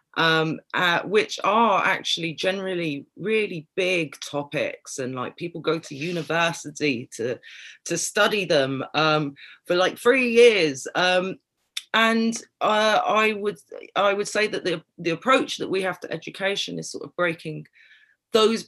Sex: female